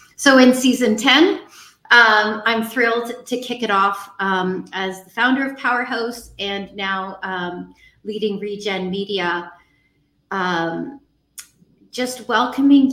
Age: 30-49